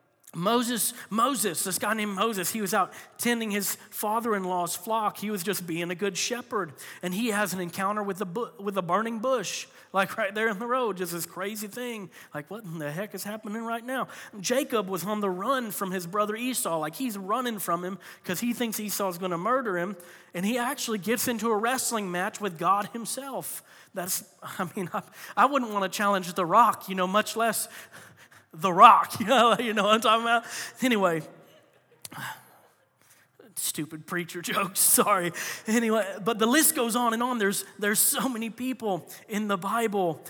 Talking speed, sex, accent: 195 wpm, male, American